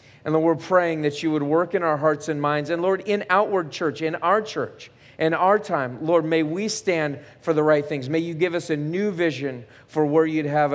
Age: 40-59